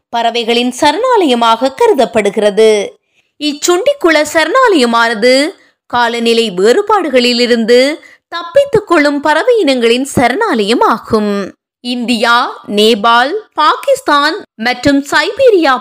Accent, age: native, 20-39